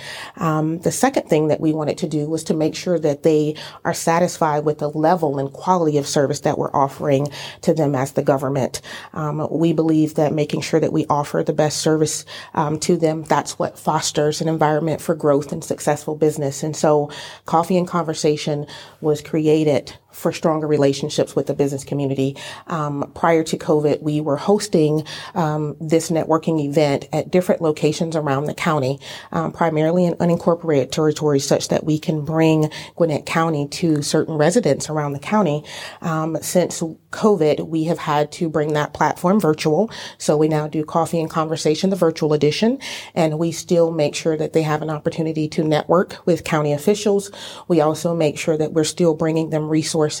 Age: 30-49